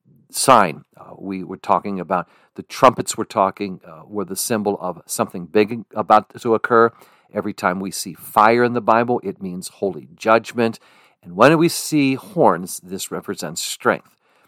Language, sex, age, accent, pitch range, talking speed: English, male, 50-69, American, 100-125 Hz, 165 wpm